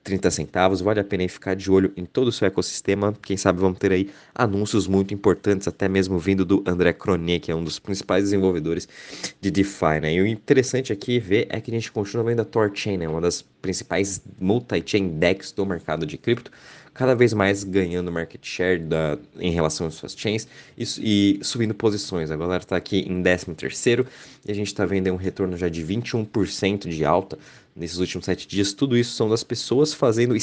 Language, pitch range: Portuguese, 90-105 Hz